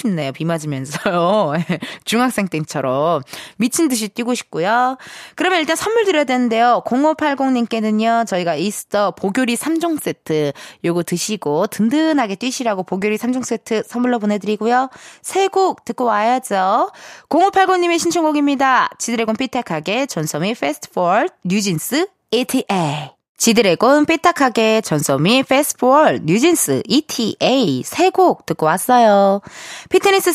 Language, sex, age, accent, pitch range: Korean, female, 20-39, native, 195-305 Hz